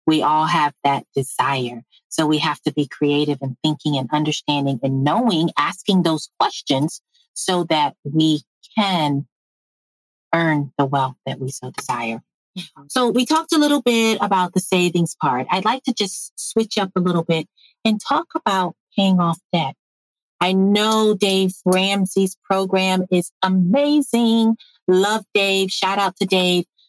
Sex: female